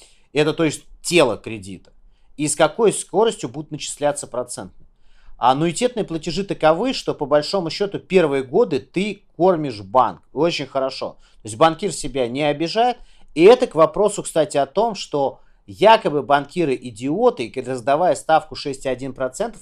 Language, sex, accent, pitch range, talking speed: Russian, male, native, 130-170 Hz, 145 wpm